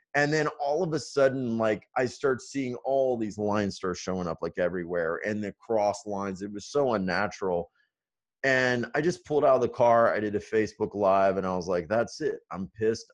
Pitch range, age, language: 100-125 Hz, 30-49, English